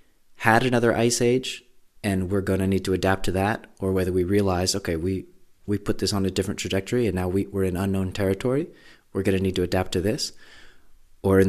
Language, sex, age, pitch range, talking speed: English, male, 30-49, 90-105 Hz, 225 wpm